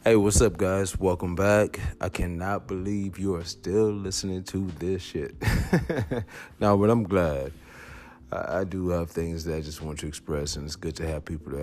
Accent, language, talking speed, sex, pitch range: American, English, 200 wpm, male, 80-95 Hz